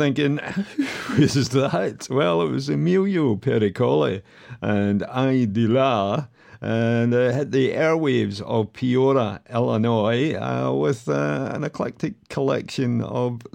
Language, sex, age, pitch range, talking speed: English, male, 50-69, 95-120 Hz, 125 wpm